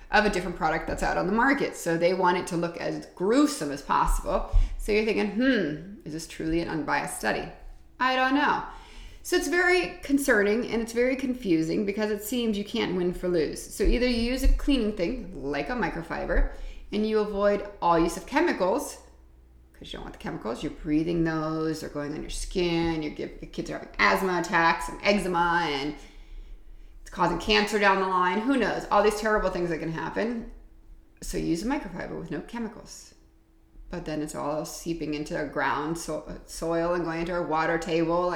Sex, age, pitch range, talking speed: female, 30-49, 160-215 Hz, 195 wpm